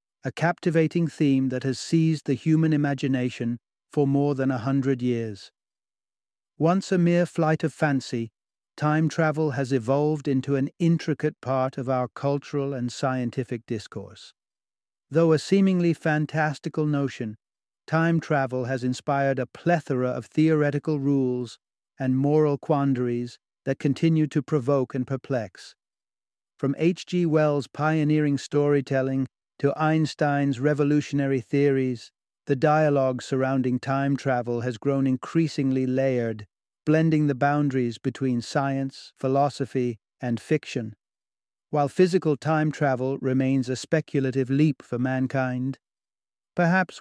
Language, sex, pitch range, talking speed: English, male, 125-150 Hz, 120 wpm